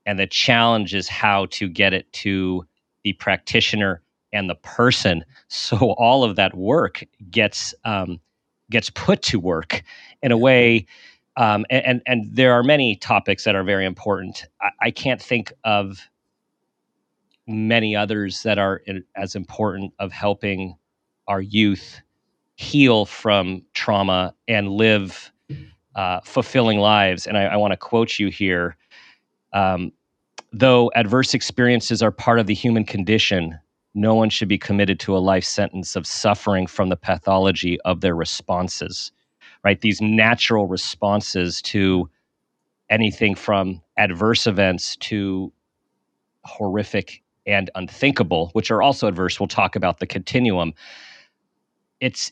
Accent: American